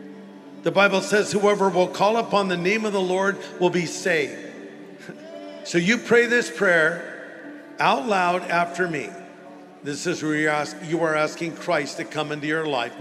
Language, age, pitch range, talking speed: English, 50-69, 160-200 Hz, 170 wpm